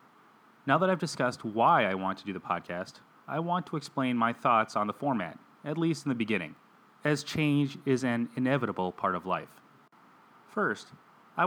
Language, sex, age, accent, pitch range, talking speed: English, male, 30-49, American, 110-155 Hz, 185 wpm